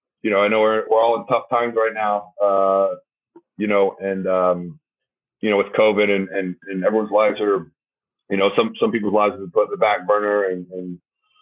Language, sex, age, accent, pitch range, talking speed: English, male, 30-49, American, 95-120 Hz, 215 wpm